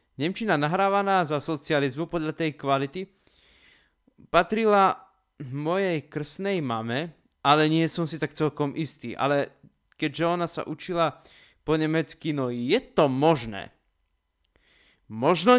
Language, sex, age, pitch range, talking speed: Slovak, male, 20-39, 135-180 Hz, 115 wpm